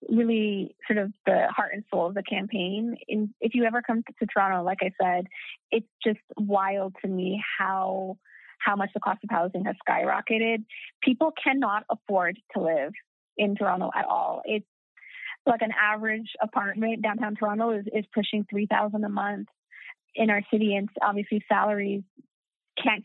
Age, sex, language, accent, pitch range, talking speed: 20-39, female, English, American, 205-235 Hz, 165 wpm